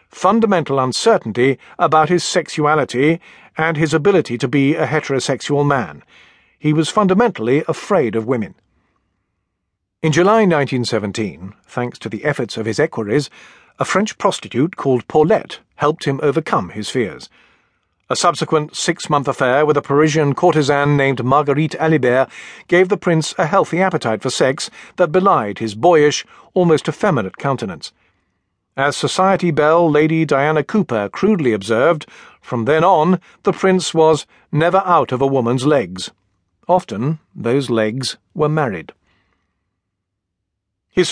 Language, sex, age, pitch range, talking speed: English, male, 50-69, 120-165 Hz, 135 wpm